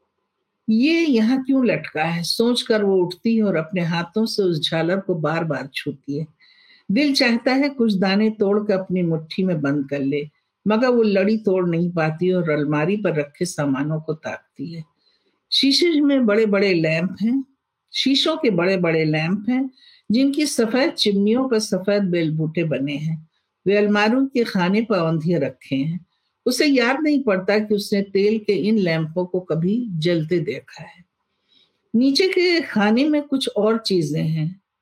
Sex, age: female, 50-69